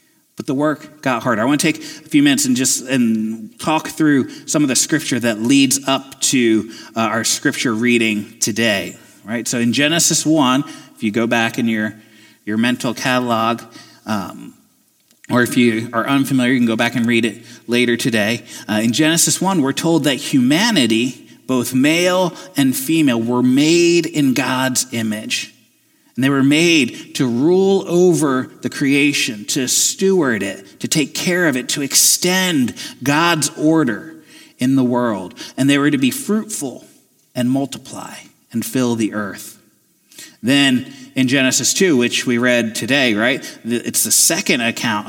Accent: American